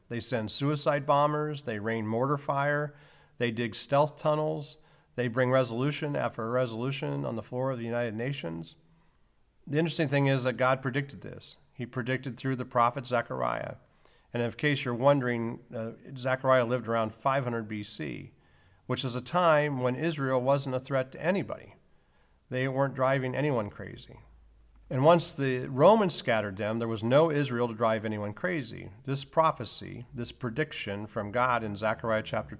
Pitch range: 110-135 Hz